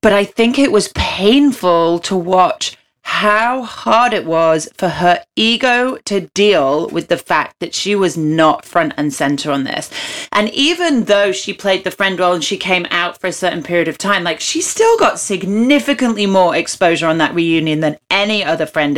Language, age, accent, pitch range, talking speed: English, 30-49, British, 170-240 Hz, 195 wpm